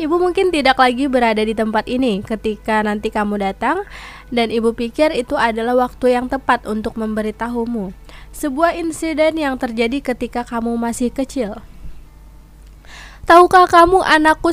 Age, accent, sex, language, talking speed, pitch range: 20-39, native, female, Indonesian, 135 wpm, 235-300 Hz